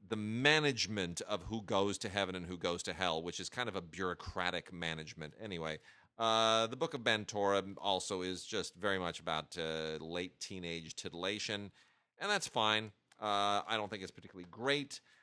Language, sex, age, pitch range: English, male, 40-59, 85-110 Hz